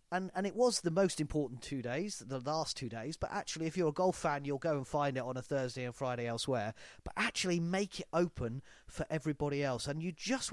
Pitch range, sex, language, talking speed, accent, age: 125-160 Hz, male, English, 240 wpm, British, 40-59